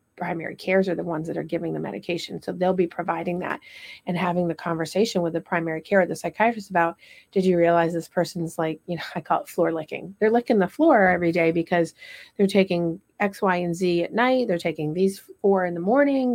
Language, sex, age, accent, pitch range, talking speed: English, female, 30-49, American, 170-200 Hz, 230 wpm